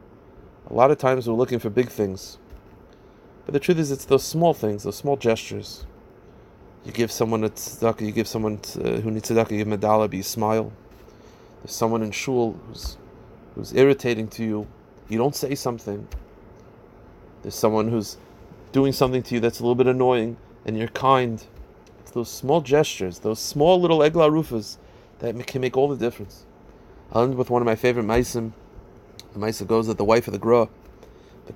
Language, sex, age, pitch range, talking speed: English, male, 30-49, 105-125 Hz, 190 wpm